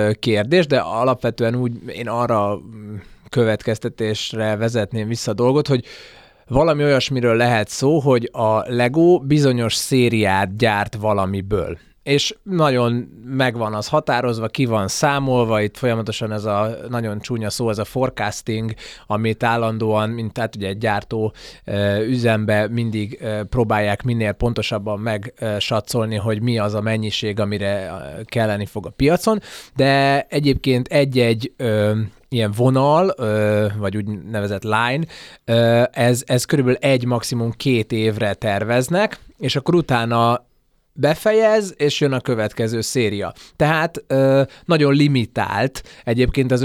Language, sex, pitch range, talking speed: Hungarian, male, 110-130 Hz, 120 wpm